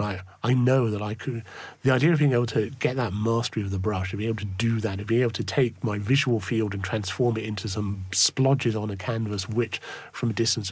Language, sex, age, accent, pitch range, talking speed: English, male, 40-59, British, 95-120 Hz, 250 wpm